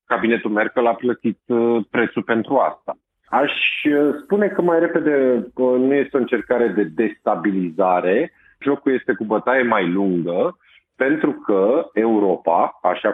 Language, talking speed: Romanian, 130 wpm